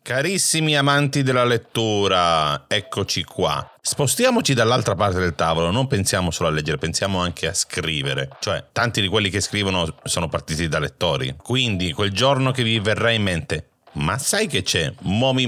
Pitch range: 85-125 Hz